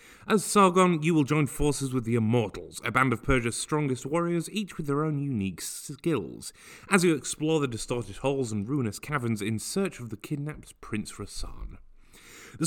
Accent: British